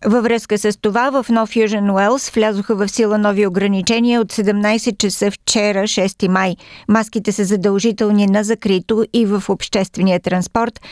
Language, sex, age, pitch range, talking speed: Bulgarian, female, 50-69, 200-230 Hz, 155 wpm